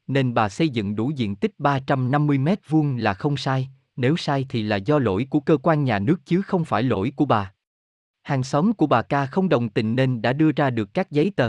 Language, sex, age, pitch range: Vietnamese, male, 20-39, 115-160 Hz